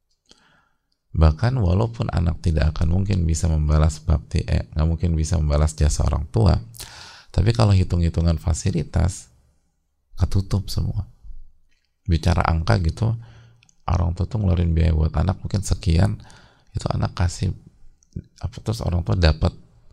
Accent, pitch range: Indonesian, 80-95 Hz